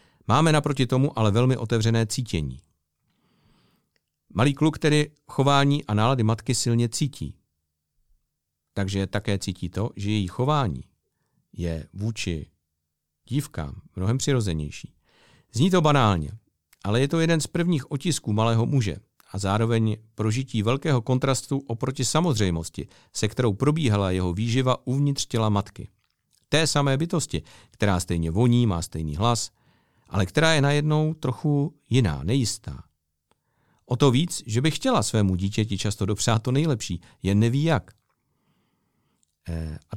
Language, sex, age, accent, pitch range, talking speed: Czech, male, 50-69, native, 90-130 Hz, 130 wpm